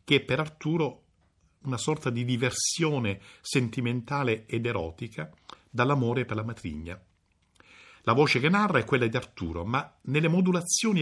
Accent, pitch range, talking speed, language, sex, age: native, 105-145 Hz, 140 wpm, Italian, male, 50-69